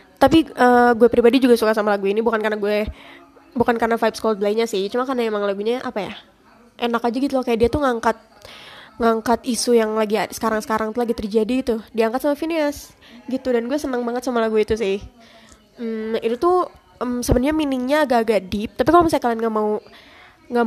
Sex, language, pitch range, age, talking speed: female, Indonesian, 225-275 Hz, 20-39, 200 wpm